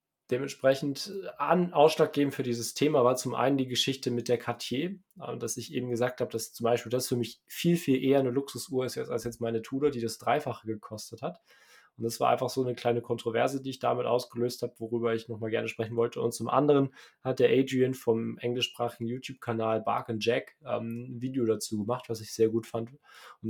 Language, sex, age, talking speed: German, male, 20-39, 200 wpm